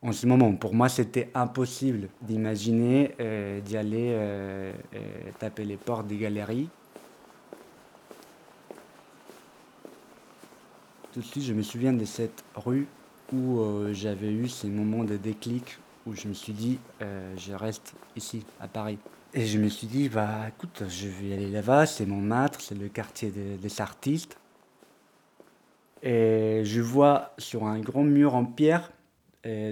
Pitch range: 105-125 Hz